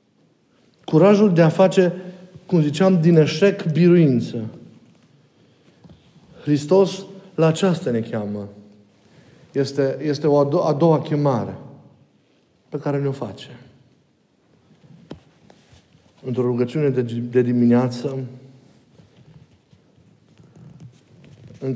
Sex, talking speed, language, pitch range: male, 85 wpm, Romanian, 120-165 Hz